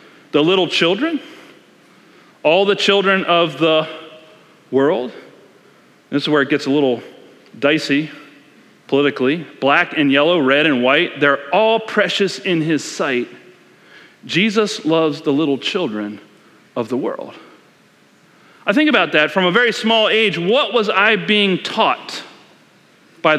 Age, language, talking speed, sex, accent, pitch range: 40-59, English, 135 wpm, male, American, 150-200 Hz